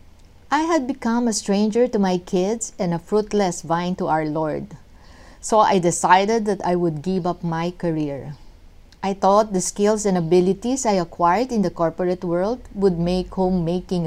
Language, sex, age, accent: English, female, 50-69, Filipino